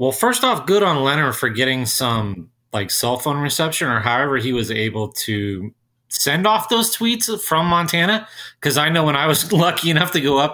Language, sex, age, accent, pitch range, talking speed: English, male, 30-49, American, 120-170 Hz, 205 wpm